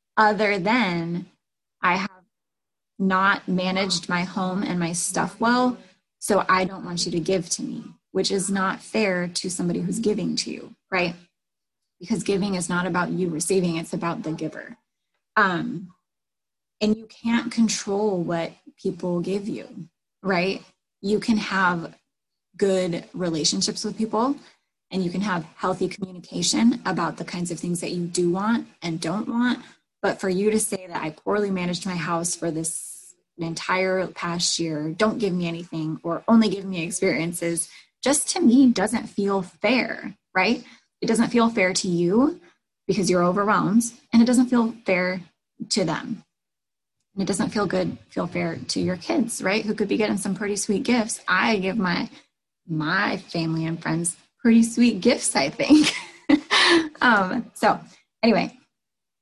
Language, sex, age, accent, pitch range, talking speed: English, female, 20-39, American, 175-220 Hz, 160 wpm